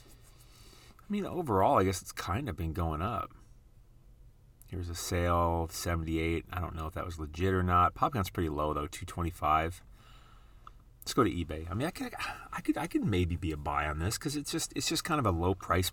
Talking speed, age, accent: 215 wpm, 30-49, American